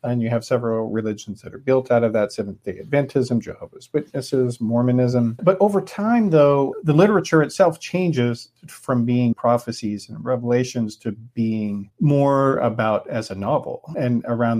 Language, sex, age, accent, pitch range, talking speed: English, male, 40-59, American, 105-135 Hz, 155 wpm